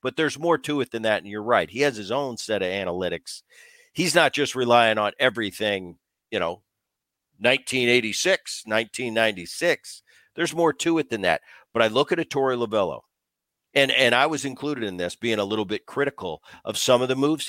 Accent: American